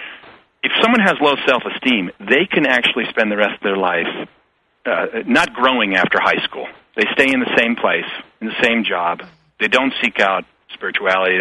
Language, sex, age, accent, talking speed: English, male, 40-59, American, 190 wpm